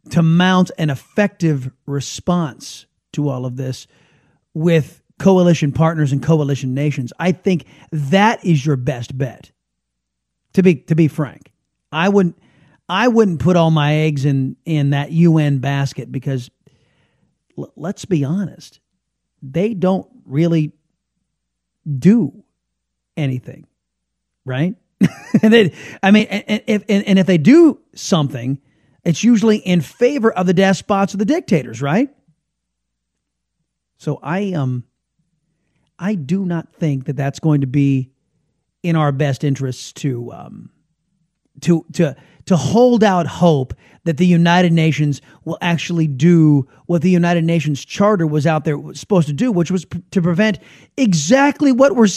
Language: English